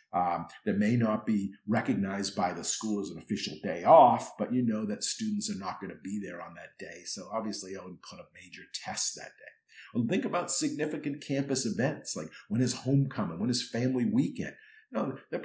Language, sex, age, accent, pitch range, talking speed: English, male, 50-69, American, 100-140 Hz, 220 wpm